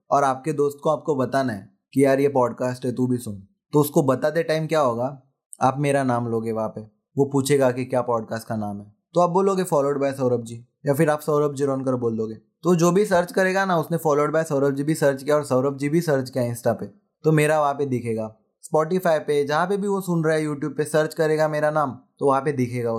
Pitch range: 125-155 Hz